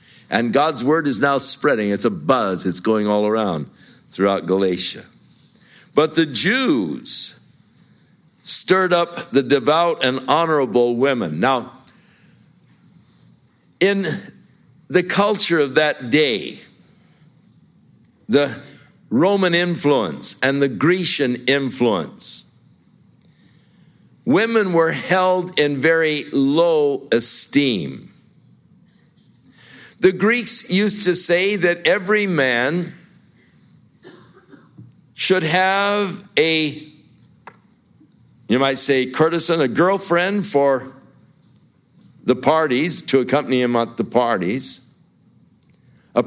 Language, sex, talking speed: English, male, 90 wpm